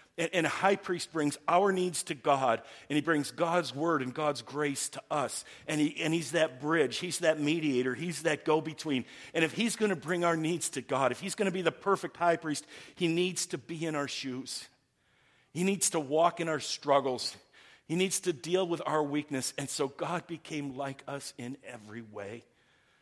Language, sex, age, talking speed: English, male, 50-69, 205 wpm